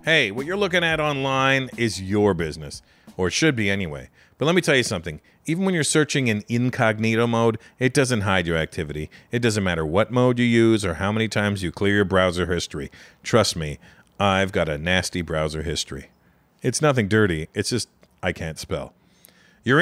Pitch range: 90-125 Hz